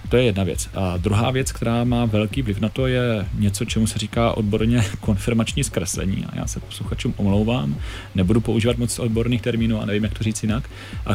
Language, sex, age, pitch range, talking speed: Czech, male, 30-49, 100-115 Hz, 200 wpm